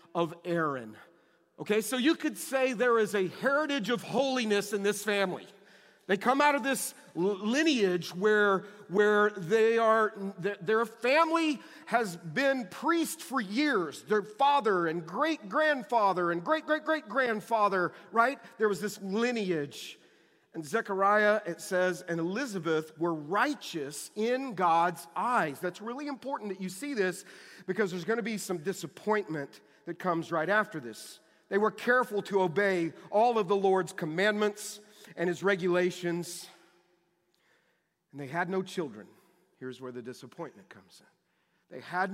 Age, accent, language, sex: 40-59, American, English, male